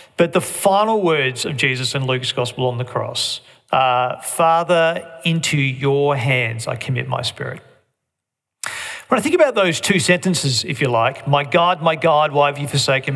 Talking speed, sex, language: 180 wpm, male, English